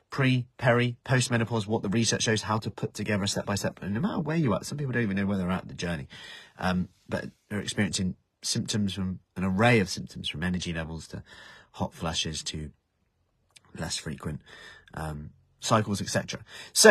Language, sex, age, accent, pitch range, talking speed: English, male, 30-49, British, 85-115 Hz, 180 wpm